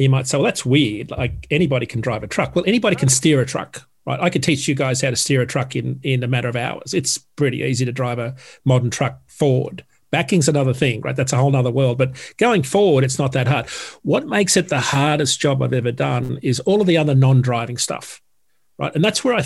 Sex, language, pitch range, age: male, English, 130-155 Hz, 40-59